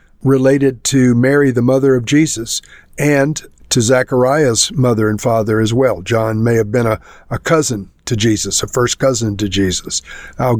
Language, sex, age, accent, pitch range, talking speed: English, male, 50-69, American, 115-140 Hz, 170 wpm